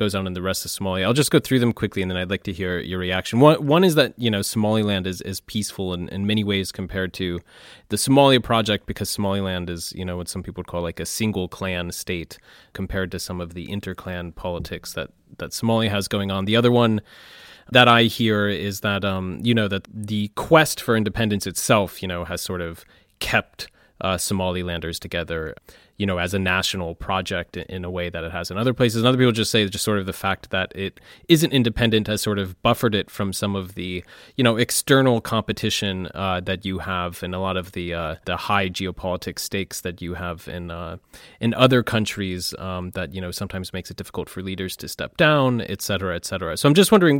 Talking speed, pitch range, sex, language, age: 230 wpm, 90-110 Hz, male, English, 30-49